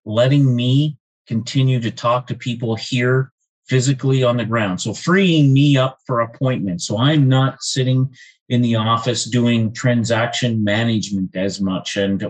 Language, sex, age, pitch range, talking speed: English, male, 30-49, 105-125 Hz, 150 wpm